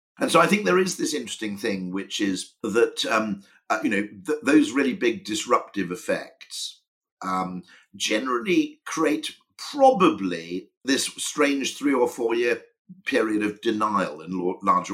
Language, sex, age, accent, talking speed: English, male, 50-69, British, 145 wpm